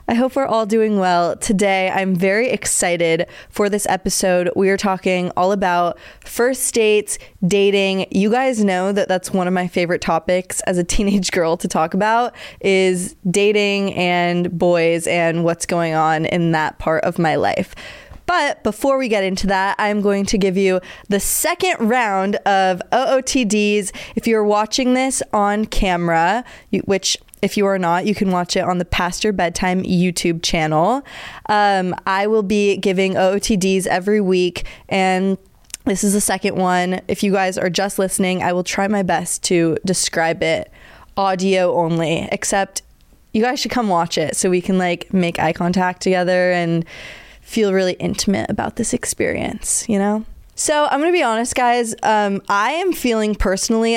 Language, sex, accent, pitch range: English, female, American, 180-210 Hz